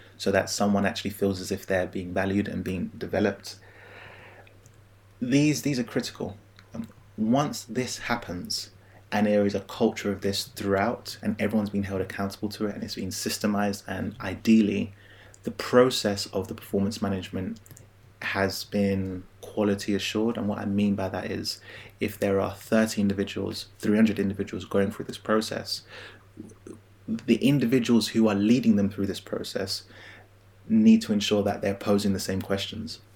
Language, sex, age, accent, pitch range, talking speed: English, male, 30-49, British, 95-110 Hz, 155 wpm